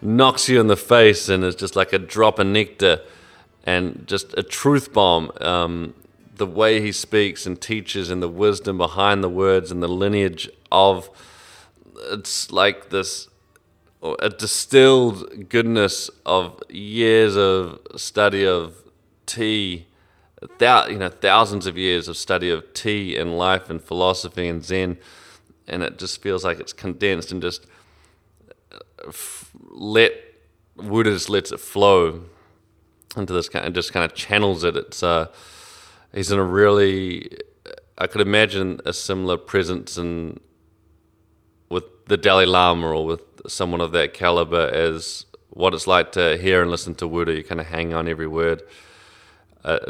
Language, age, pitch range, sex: English, 30-49, 85-105 Hz, male